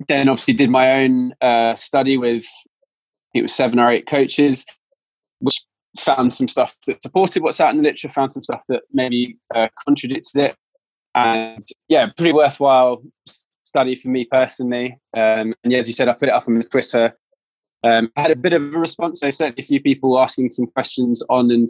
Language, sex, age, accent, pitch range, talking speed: English, male, 20-39, British, 115-140 Hz, 205 wpm